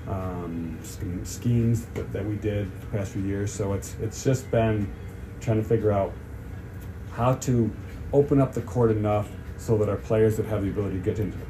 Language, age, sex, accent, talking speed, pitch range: English, 40-59, male, American, 200 wpm, 95-110 Hz